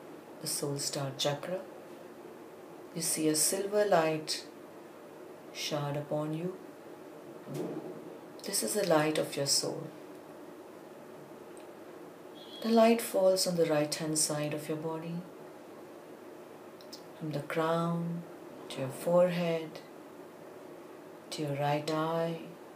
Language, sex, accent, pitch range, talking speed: English, female, Indian, 150-170 Hz, 105 wpm